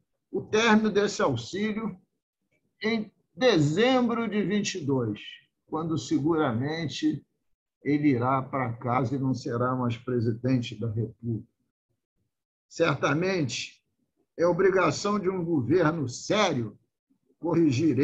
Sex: male